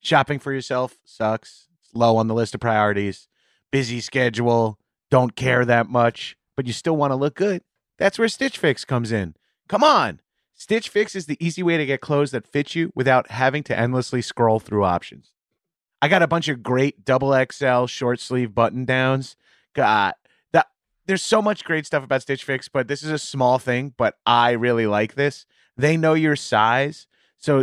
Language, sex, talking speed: English, male, 195 wpm